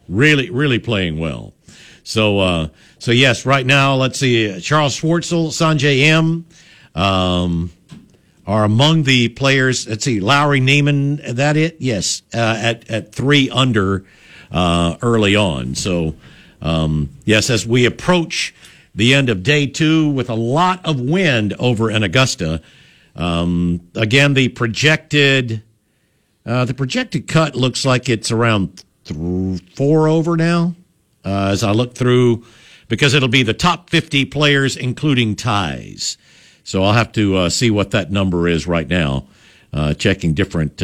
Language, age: English, 60-79